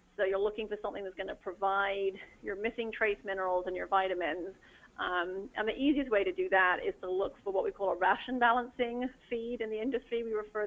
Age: 30-49